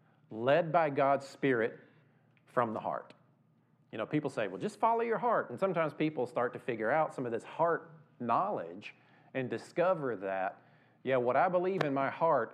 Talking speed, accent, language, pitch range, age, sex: 180 wpm, American, English, 115-145 Hz, 40-59, male